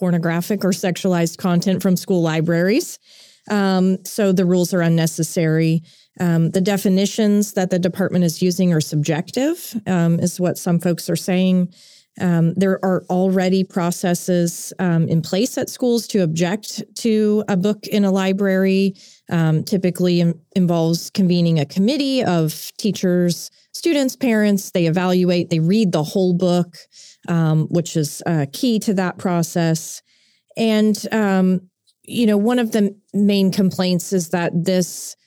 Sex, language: female, English